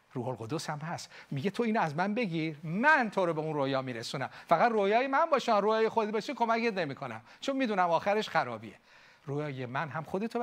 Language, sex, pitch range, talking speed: Persian, male, 160-200 Hz, 195 wpm